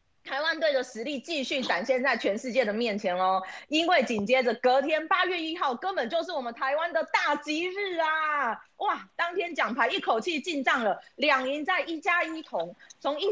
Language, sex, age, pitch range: Chinese, female, 20-39, 230-320 Hz